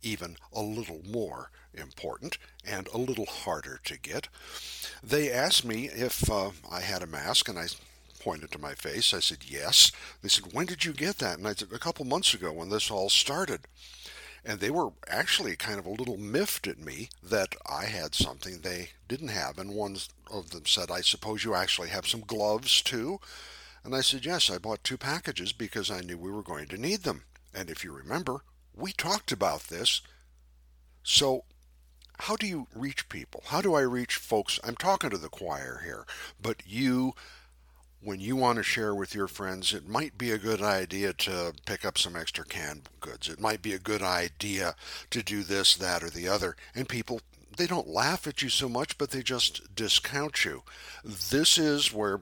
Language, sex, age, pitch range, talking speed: English, male, 60-79, 90-130 Hz, 200 wpm